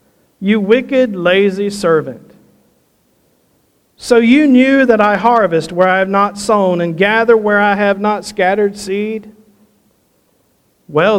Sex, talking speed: male, 130 wpm